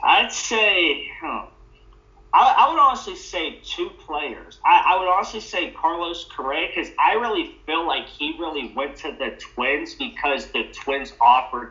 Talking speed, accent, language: 150 wpm, American, English